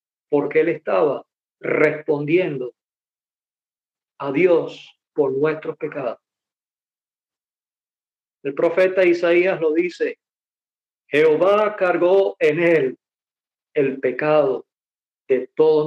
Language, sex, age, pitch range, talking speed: English, male, 50-69, 160-240 Hz, 85 wpm